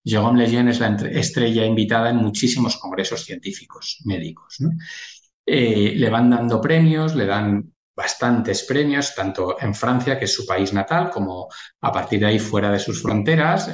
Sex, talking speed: male, 165 wpm